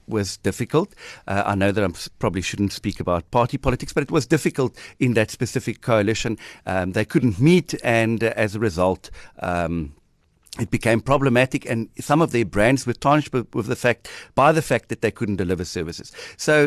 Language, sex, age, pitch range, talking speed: English, male, 50-69, 100-125 Hz, 190 wpm